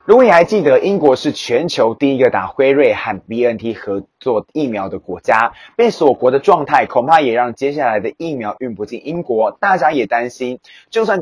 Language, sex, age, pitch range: Chinese, male, 20-39, 115-170 Hz